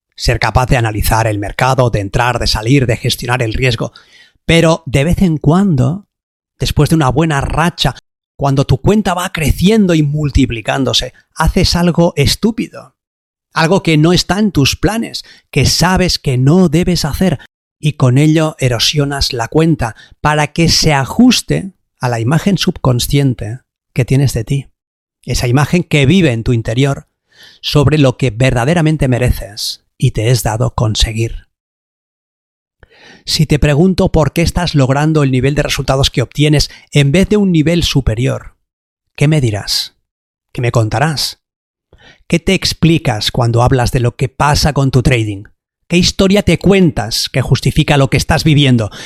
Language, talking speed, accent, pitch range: Spanish, 160 wpm, Spanish, 125-160 Hz